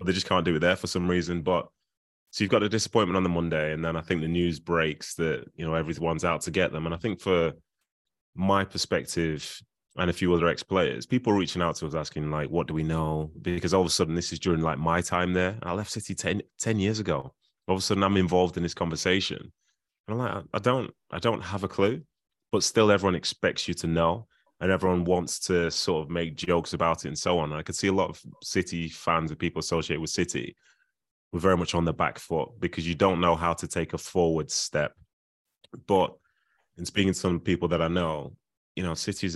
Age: 20-39